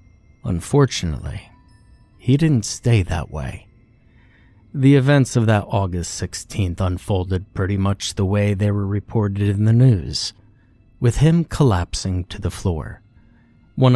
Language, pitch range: English, 95-115 Hz